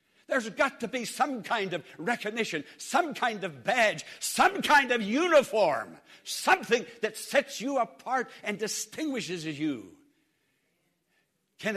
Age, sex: 60-79, male